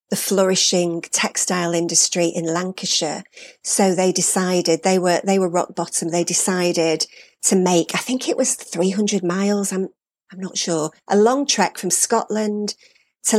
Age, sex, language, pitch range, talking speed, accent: 40-59, female, English, 175-210 Hz, 160 wpm, British